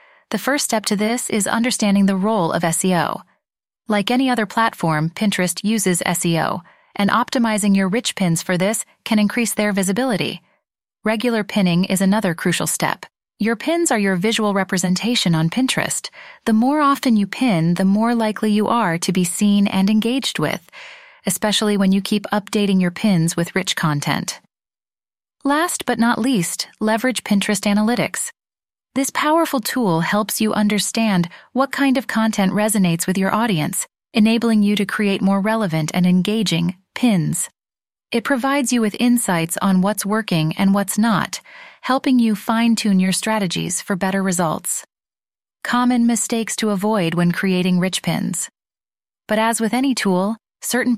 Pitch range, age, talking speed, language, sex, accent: 190-230 Hz, 30-49, 155 wpm, English, female, American